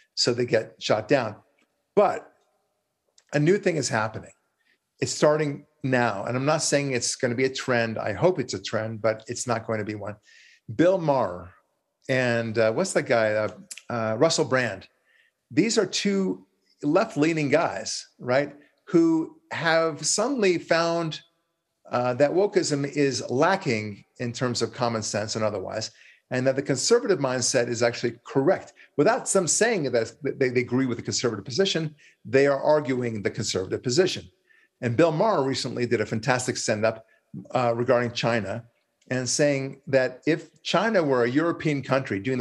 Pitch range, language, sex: 115-155 Hz, English, male